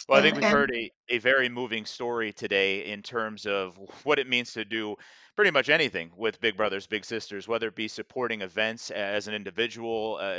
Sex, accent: male, American